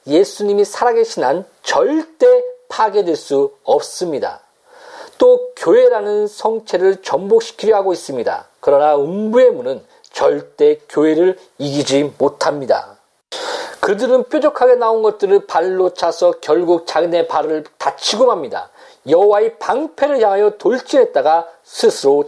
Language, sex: Korean, male